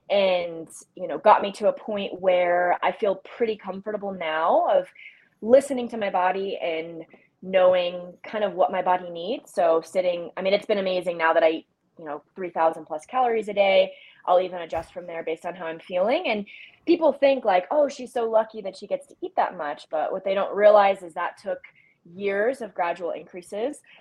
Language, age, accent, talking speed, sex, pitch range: English, 20-39, American, 205 wpm, female, 175-215 Hz